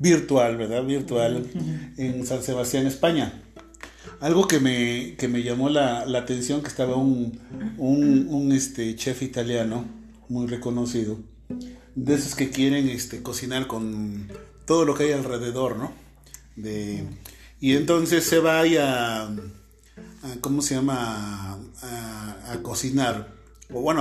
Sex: male